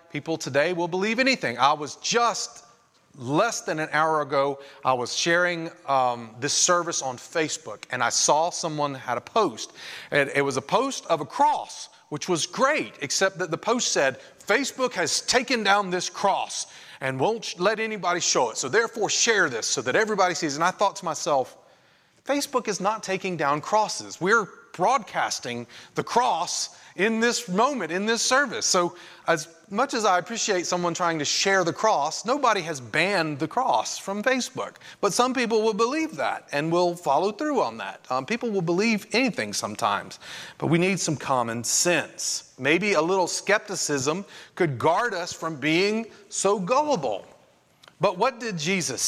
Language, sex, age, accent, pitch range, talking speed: English, male, 30-49, American, 155-220 Hz, 175 wpm